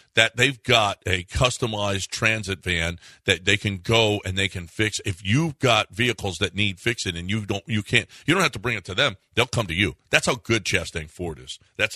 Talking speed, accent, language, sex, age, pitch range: 235 wpm, American, English, male, 50-69, 100-125 Hz